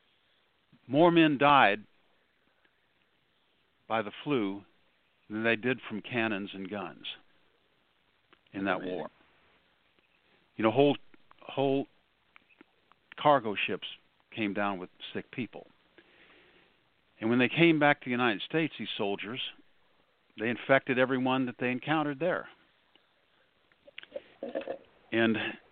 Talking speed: 105 wpm